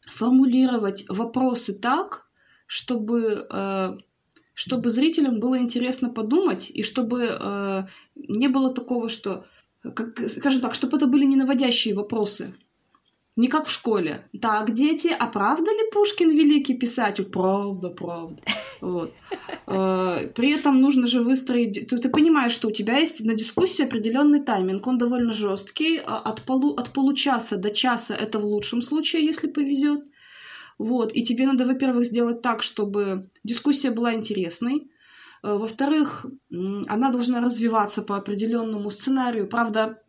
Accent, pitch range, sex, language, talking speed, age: native, 225-280 Hz, female, Russian, 130 wpm, 20-39